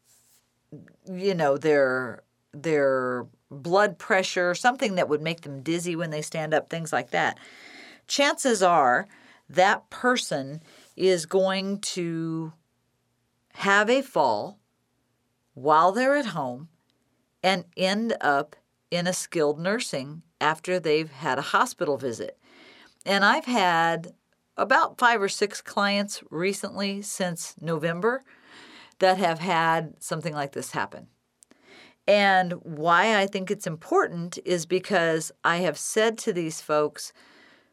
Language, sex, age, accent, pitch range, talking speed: English, female, 50-69, American, 150-190 Hz, 125 wpm